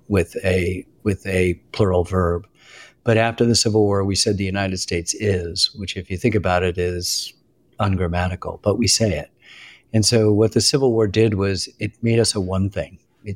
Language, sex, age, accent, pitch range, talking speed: English, male, 50-69, American, 95-110 Hz, 200 wpm